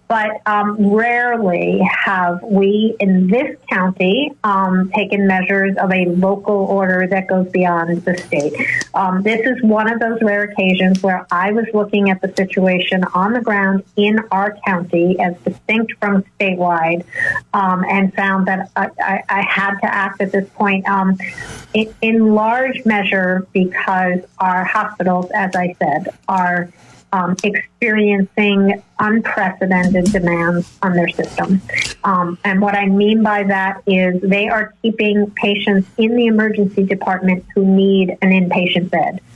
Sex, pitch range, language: female, 185-215 Hz, English